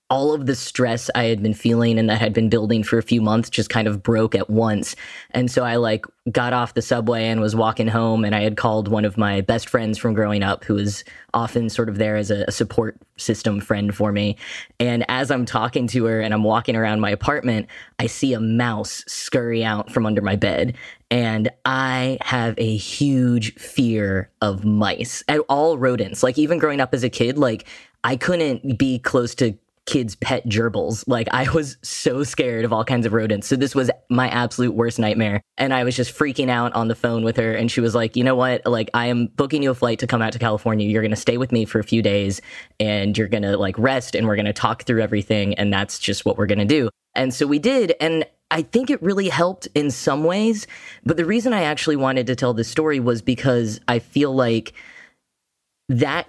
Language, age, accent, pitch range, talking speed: English, 10-29, American, 110-130 Hz, 230 wpm